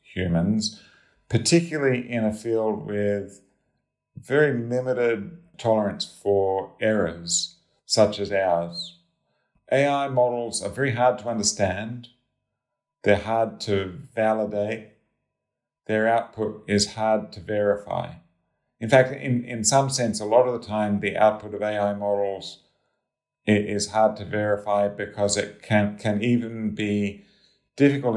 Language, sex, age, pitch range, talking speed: English, male, 50-69, 100-120 Hz, 125 wpm